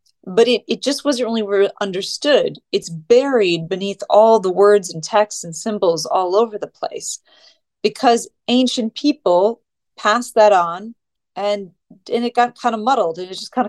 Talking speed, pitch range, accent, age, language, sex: 165 wpm, 175-220 Hz, American, 30-49, English, female